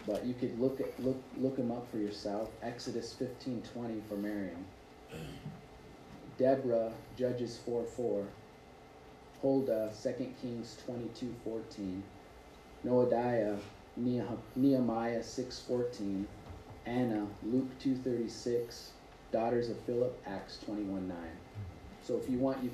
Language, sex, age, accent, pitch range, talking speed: English, male, 30-49, American, 100-120 Hz, 115 wpm